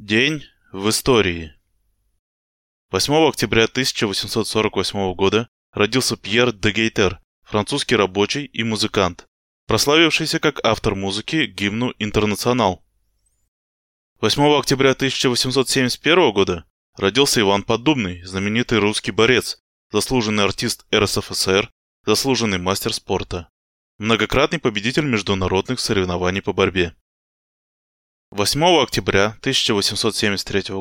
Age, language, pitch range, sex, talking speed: 20-39, Russian, 95-120 Hz, male, 90 wpm